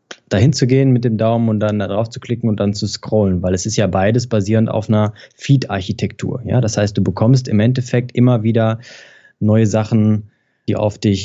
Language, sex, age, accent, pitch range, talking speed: German, male, 20-39, German, 105-125 Hz, 205 wpm